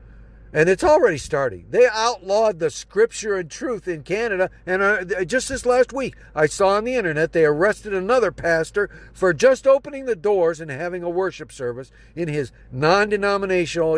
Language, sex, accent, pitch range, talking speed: English, male, American, 160-245 Hz, 165 wpm